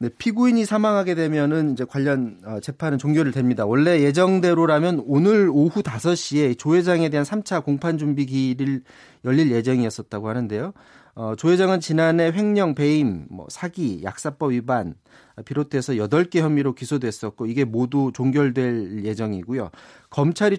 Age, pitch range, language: 30-49, 125-170 Hz, Korean